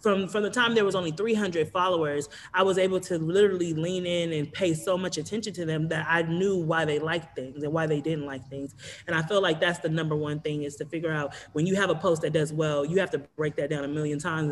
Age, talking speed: 30-49, 275 wpm